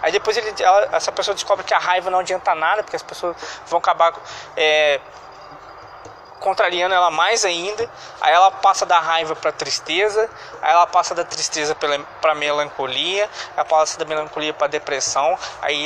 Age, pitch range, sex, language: 20-39, 155-245 Hz, male, Portuguese